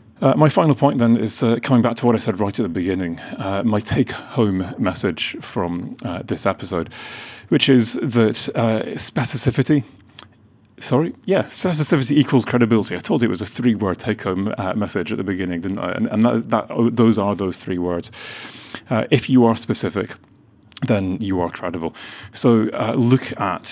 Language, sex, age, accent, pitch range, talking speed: English, male, 30-49, British, 95-120 Hz, 190 wpm